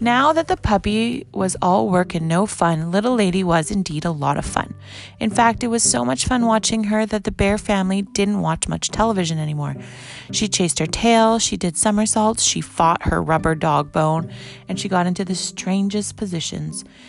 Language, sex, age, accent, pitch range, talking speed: English, female, 30-49, American, 165-210 Hz, 195 wpm